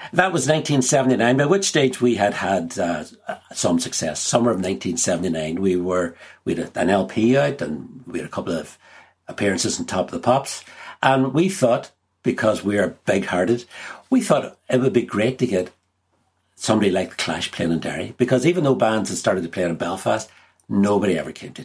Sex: male